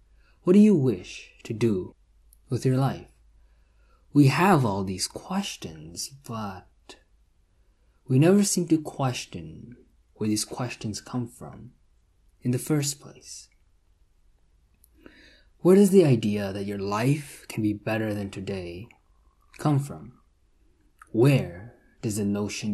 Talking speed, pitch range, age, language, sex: 125 wpm, 85-135 Hz, 20-39, English, male